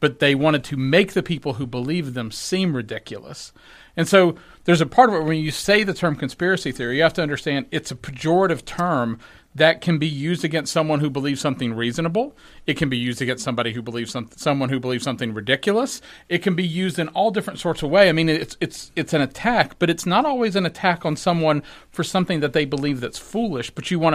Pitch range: 130-165 Hz